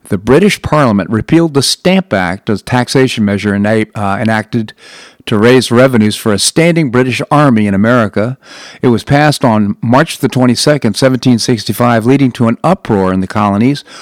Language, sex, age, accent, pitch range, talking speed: English, male, 50-69, American, 105-130 Hz, 160 wpm